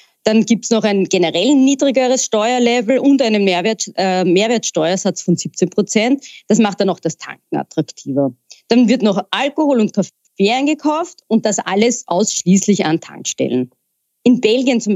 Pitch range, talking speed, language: 180-230 Hz, 150 wpm, German